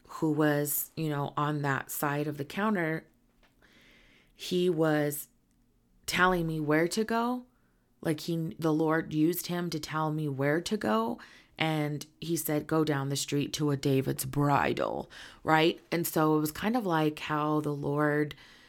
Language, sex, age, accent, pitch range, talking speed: English, female, 30-49, American, 140-160 Hz, 165 wpm